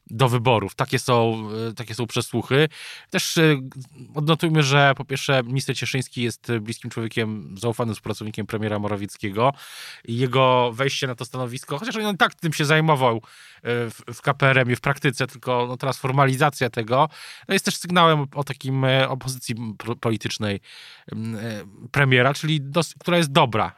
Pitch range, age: 115-145 Hz, 20-39